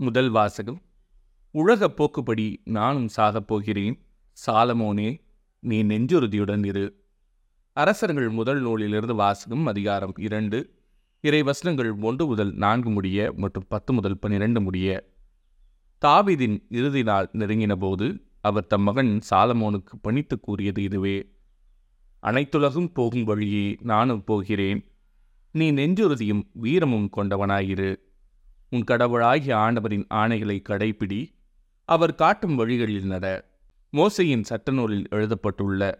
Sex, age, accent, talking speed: male, 30-49, native, 100 wpm